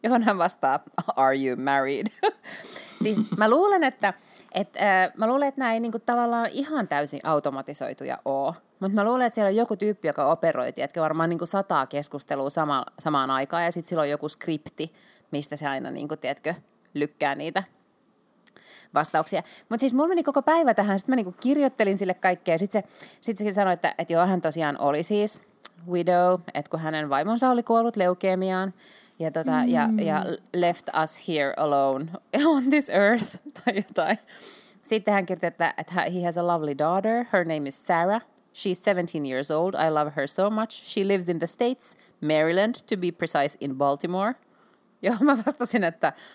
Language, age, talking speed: Finnish, 30-49, 180 wpm